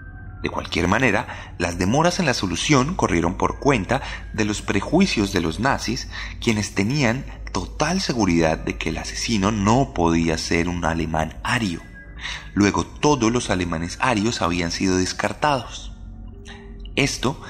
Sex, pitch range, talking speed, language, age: male, 85-110 Hz, 135 wpm, Spanish, 30-49